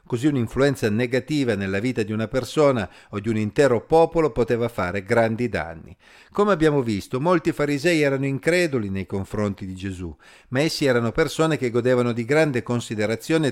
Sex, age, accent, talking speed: male, 50-69, native, 165 wpm